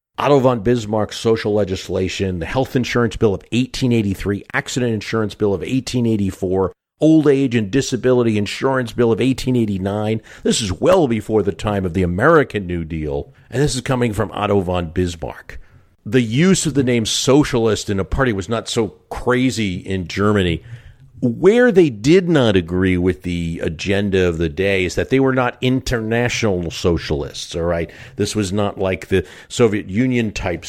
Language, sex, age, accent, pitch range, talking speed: English, male, 50-69, American, 85-115 Hz, 165 wpm